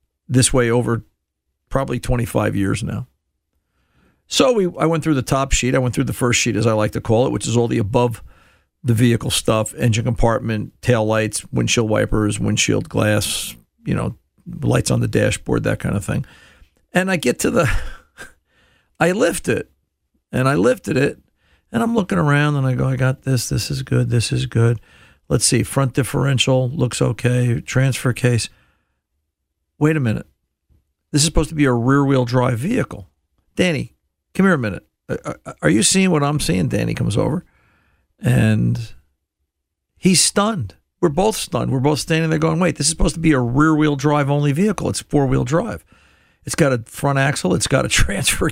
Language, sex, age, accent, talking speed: English, male, 50-69, American, 180 wpm